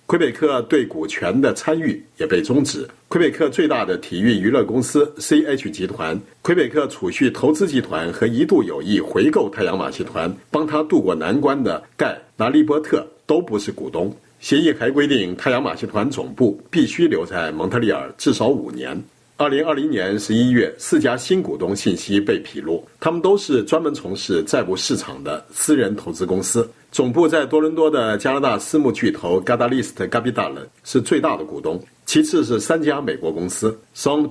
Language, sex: Chinese, male